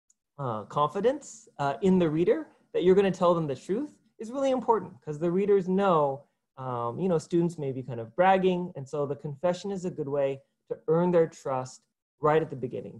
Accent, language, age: American, English, 30-49